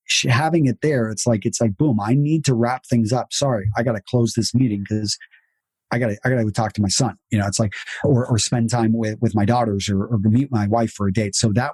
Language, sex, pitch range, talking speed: English, male, 115-140 Hz, 275 wpm